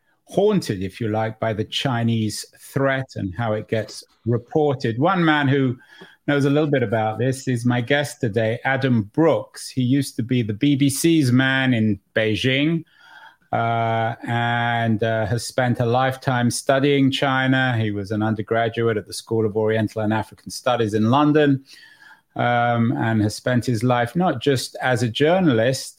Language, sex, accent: English, male, British